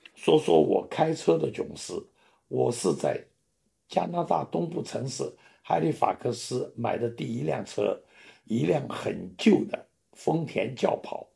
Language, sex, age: Chinese, male, 60-79